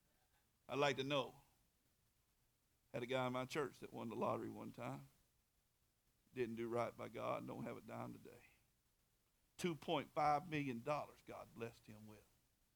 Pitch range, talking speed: 160-230 Hz, 155 wpm